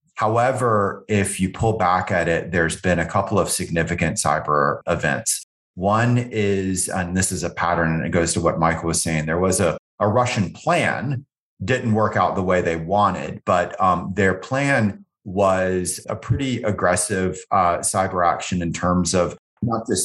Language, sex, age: English, male, 30-49